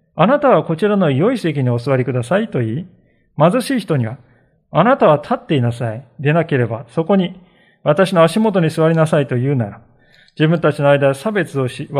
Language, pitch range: Japanese, 130-175 Hz